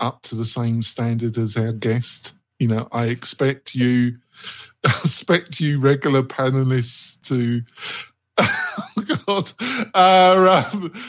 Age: 50-69